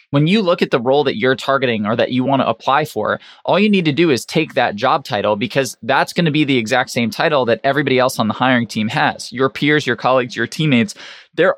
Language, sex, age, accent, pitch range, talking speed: English, male, 20-39, American, 120-160 Hz, 260 wpm